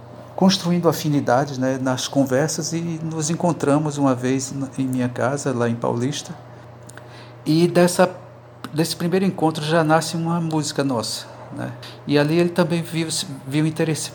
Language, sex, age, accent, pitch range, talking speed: Portuguese, male, 50-69, Brazilian, 120-150 Hz, 145 wpm